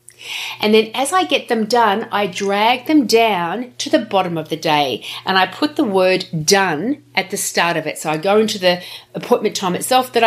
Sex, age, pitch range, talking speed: female, 40-59, 180-240 Hz, 215 wpm